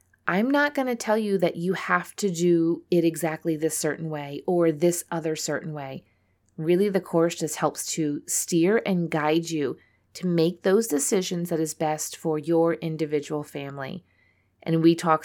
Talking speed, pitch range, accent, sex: 175 wpm, 155-190 Hz, American, female